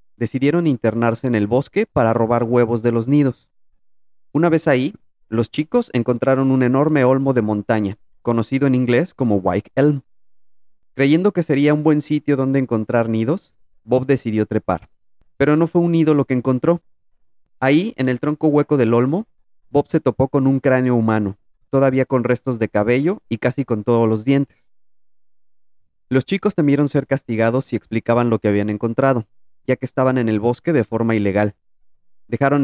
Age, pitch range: 30-49, 110-140 Hz